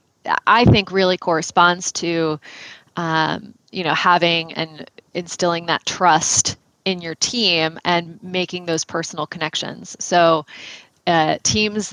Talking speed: 120 wpm